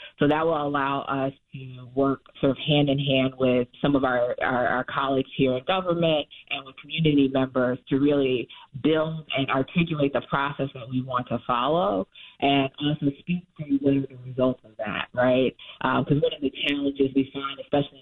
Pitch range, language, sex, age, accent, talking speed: 130-150 Hz, English, female, 30-49, American, 195 wpm